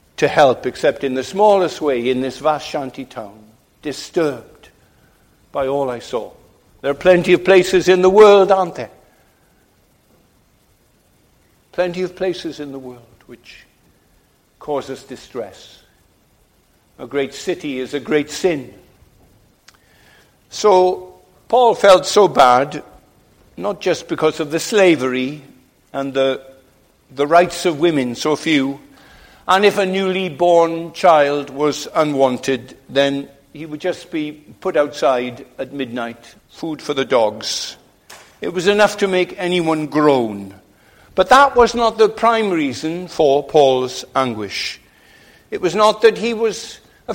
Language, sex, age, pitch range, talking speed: English, male, 60-79, 135-185 Hz, 135 wpm